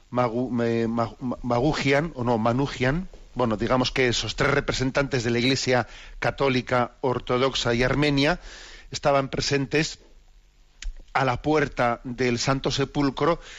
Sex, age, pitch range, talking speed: male, 40-59, 125-145 Hz, 125 wpm